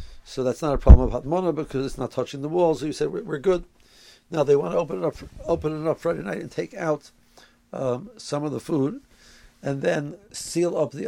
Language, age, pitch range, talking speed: English, 60-79, 130-160 Hz, 240 wpm